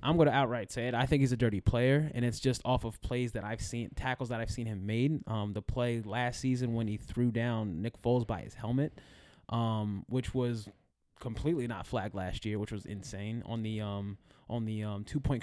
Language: English